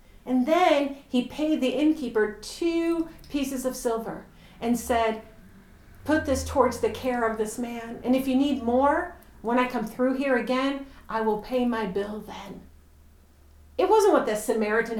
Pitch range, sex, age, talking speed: 220-290 Hz, female, 40-59, 170 wpm